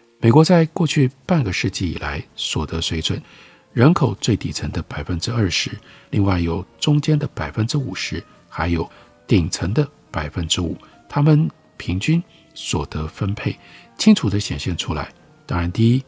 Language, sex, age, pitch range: Chinese, male, 50-69, 85-140 Hz